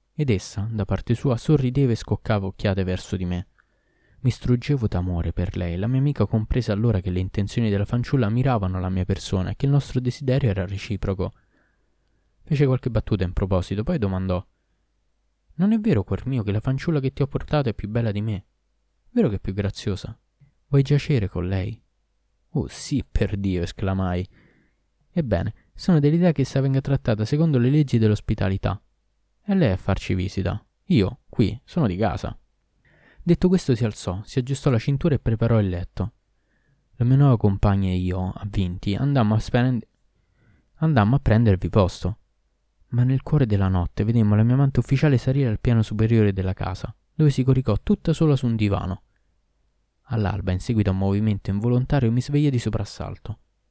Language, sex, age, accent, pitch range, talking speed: Italian, male, 20-39, native, 95-130 Hz, 180 wpm